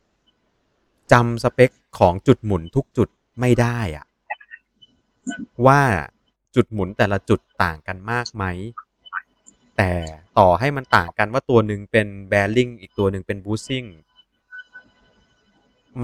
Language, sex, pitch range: Thai, male, 95-120 Hz